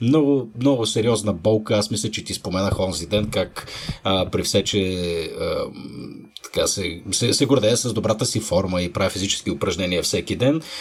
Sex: male